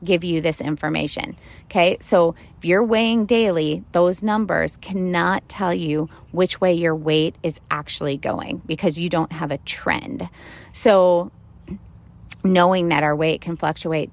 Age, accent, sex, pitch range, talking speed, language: 30-49, American, female, 160-195 Hz, 150 wpm, English